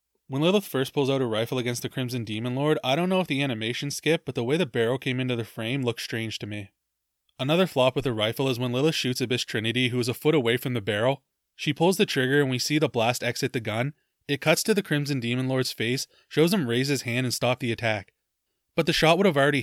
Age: 20-39